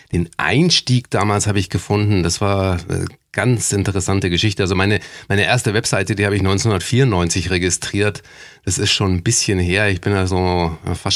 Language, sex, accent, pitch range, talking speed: German, male, German, 85-100 Hz, 175 wpm